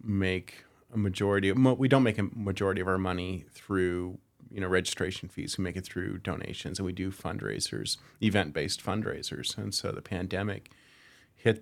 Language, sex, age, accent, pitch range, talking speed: English, male, 30-49, American, 95-105 Hz, 170 wpm